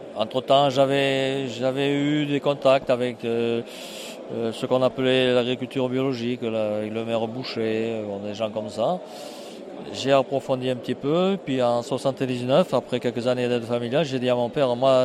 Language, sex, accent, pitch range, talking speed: French, male, French, 115-135 Hz, 170 wpm